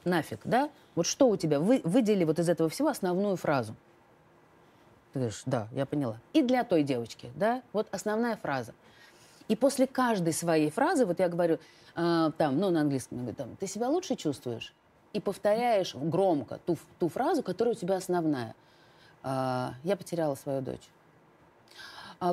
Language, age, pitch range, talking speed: Russian, 30-49, 145-215 Hz, 165 wpm